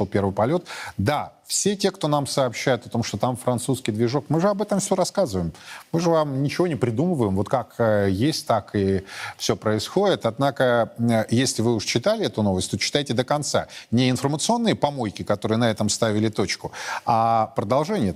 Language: Russian